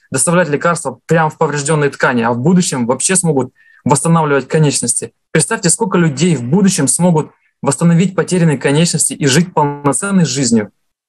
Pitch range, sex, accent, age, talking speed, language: 150-180 Hz, male, native, 20-39, 140 wpm, Russian